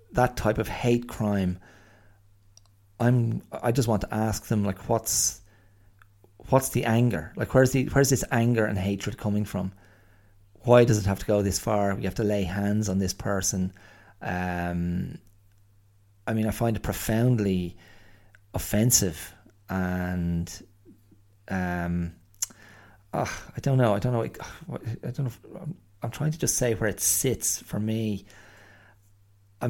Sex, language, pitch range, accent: male, English, 100-115 Hz, Irish